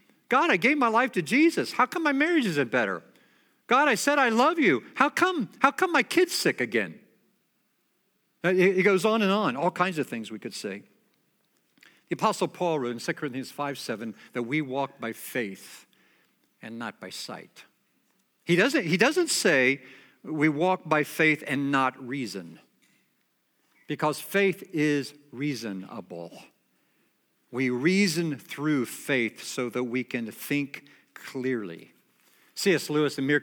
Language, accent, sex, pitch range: English, American, male, 125-180 Hz